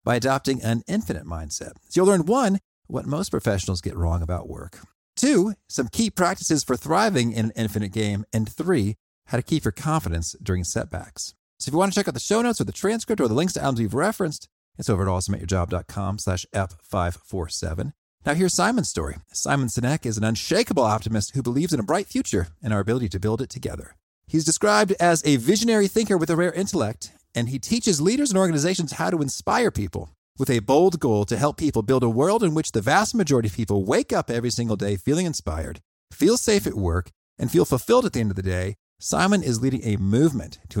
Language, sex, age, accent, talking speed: English, male, 40-59, American, 215 wpm